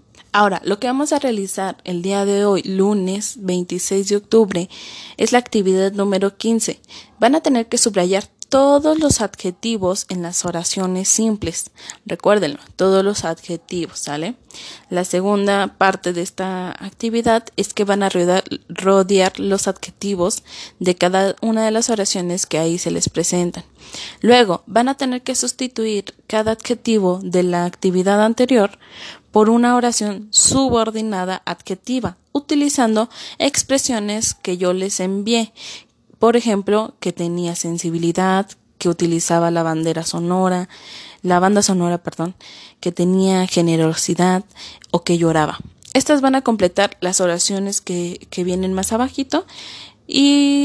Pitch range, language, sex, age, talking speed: 180-225 Hz, Spanish, female, 20-39, 135 wpm